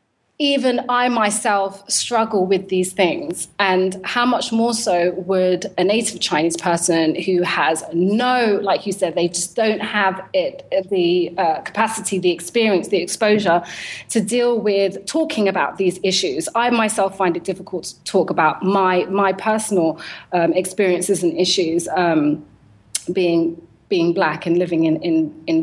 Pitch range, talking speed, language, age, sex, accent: 180-220 Hz, 150 wpm, English, 30-49, female, British